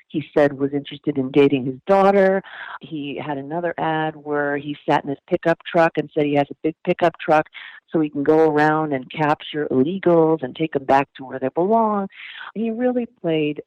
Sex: female